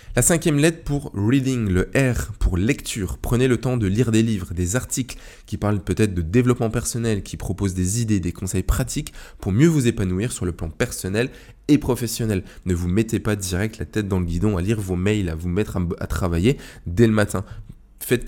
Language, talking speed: French, 225 wpm